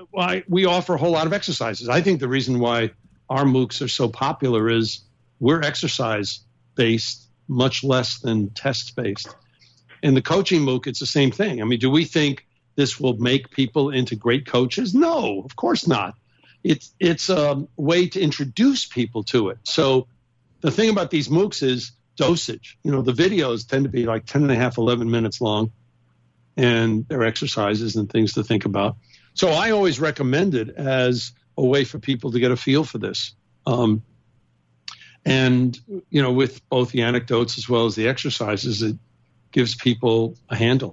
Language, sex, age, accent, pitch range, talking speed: English, male, 60-79, American, 115-140 Hz, 180 wpm